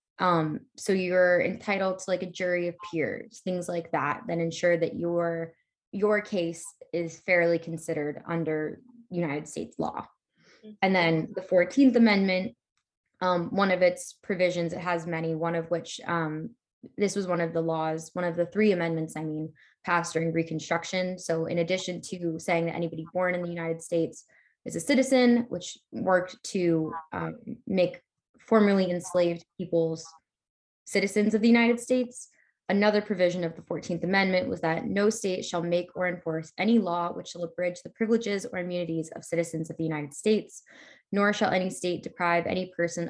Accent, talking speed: American, 170 wpm